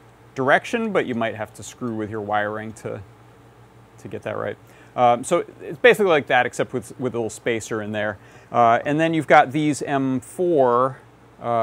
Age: 30-49